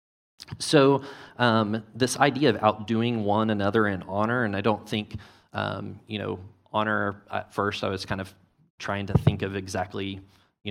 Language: English